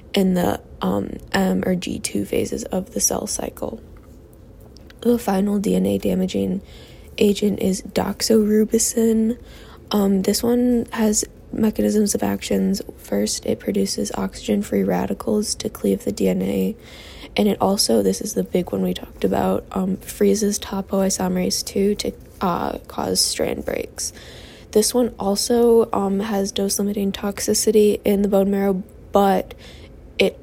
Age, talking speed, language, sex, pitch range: 10-29, 135 wpm, English, female, 160-215 Hz